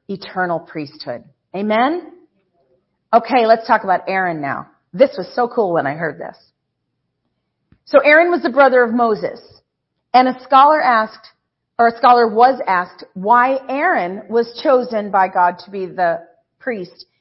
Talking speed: 150 wpm